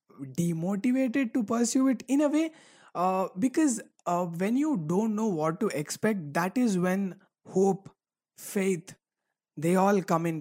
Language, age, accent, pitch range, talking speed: English, 20-39, Indian, 155-220 Hz, 150 wpm